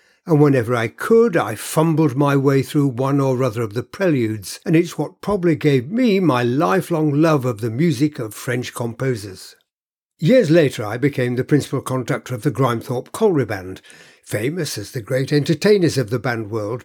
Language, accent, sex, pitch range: English, British, male, 130-175 Hz